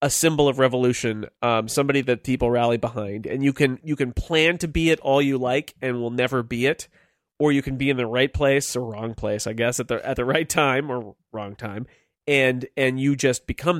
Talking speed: 235 wpm